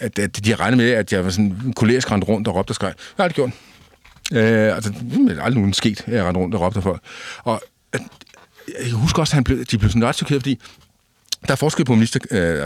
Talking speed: 255 wpm